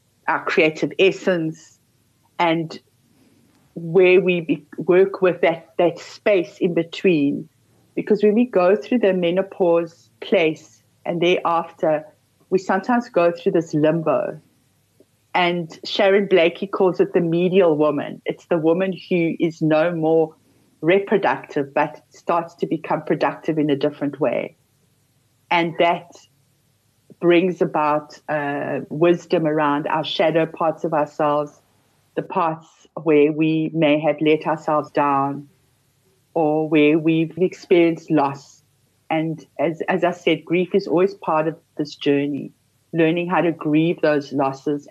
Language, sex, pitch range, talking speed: English, female, 145-175 Hz, 130 wpm